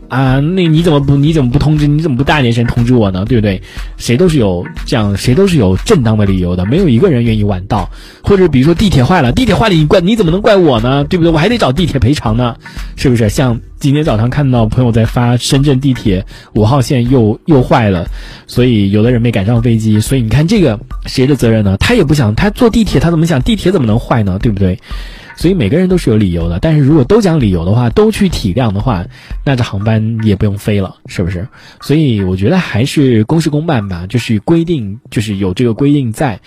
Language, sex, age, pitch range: Chinese, male, 20-39, 105-155 Hz